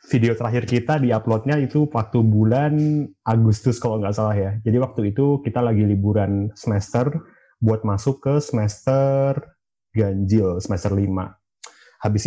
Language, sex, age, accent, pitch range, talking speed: Indonesian, male, 20-39, native, 105-125 Hz, 130 wpm